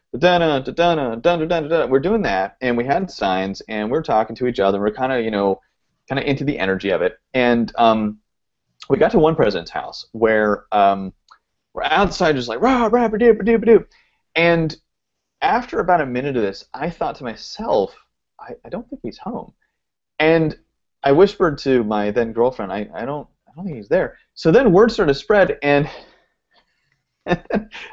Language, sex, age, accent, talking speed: English, male, 30-49, American, 195 wpm